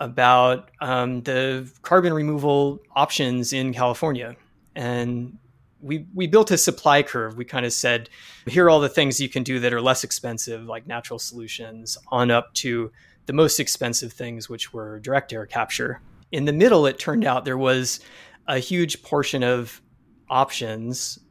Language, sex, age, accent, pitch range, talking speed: English, male, 20-39, American, 120-140 Hz, 165 wpm